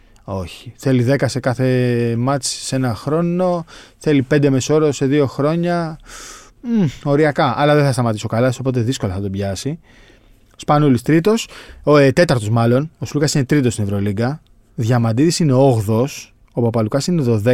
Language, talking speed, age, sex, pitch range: Greek, 155 wpm, 20-39, male, 110-150 Hz